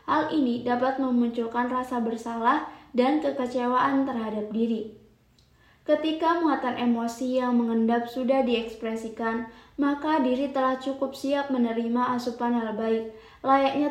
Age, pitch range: 20-39, 235-270 Hz